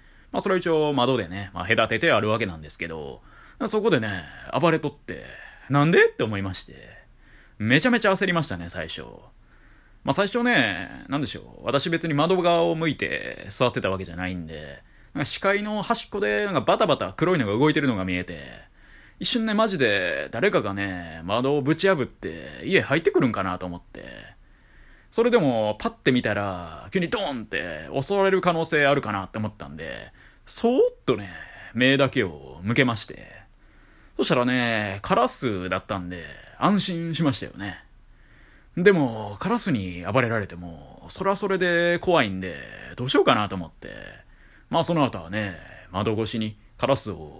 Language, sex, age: Japanese, male, 20-39